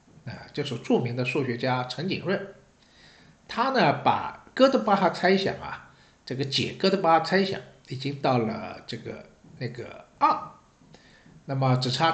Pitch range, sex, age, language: 125-180 Hz, male, 60-79, Chinese